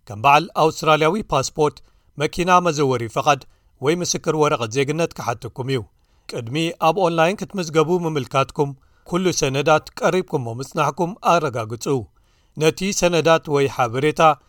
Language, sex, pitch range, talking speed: Amharic, male, 135-170 Hz, 105 wpm